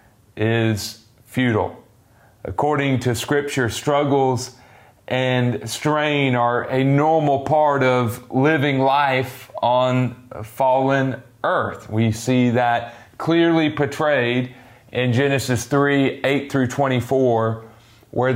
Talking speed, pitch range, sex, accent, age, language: 100 wpm, 115-140 Hz, male, American, 30-49, English